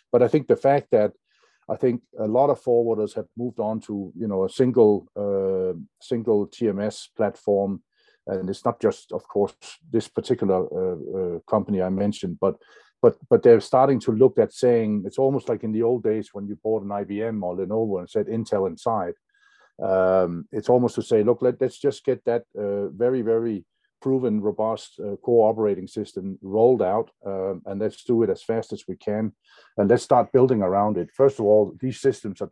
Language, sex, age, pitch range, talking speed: English, male, 50-69, 100-125 Hz, 200 wpm